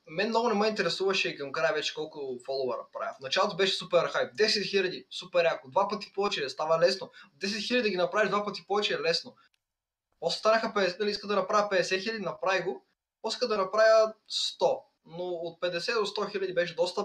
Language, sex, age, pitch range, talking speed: Bulgarian, male, 20-39, 165-205 Hz, 195 wpm